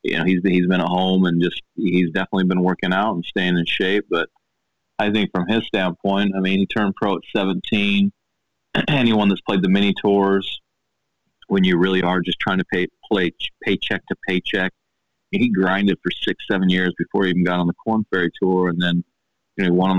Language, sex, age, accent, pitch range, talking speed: English, male, 30-49, American, 90-110 Hz, 225 wpm